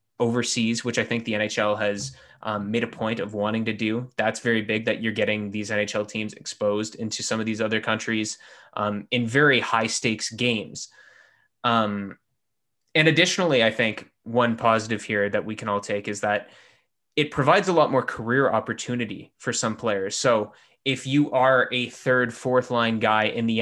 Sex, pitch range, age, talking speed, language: male, 105-125 Hz, 20-39, 185 wpm, English